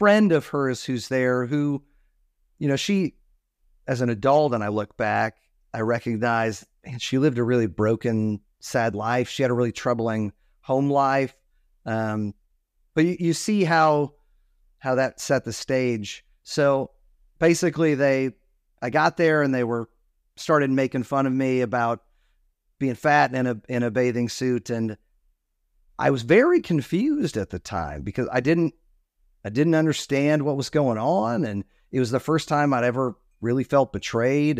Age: 40-59